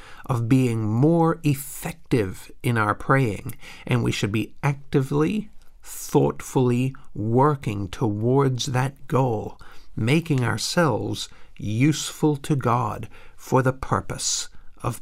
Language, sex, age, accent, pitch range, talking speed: English, male, 50-69, American, 110-145 Hz, 105 wpm